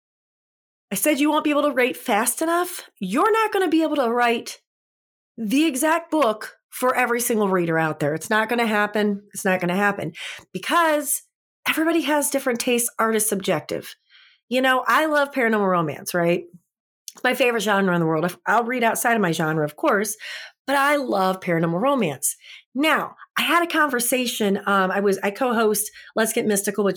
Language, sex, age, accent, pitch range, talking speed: English, female, 30-49, American, 190-270 Hz, 190 wpm